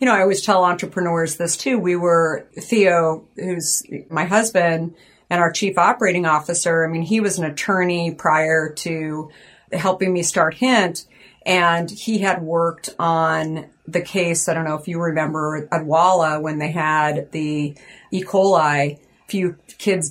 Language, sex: English, female